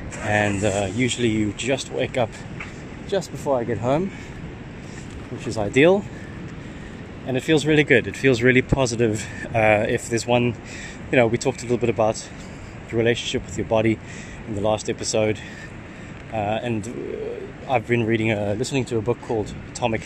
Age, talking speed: 20-39, 170 wpm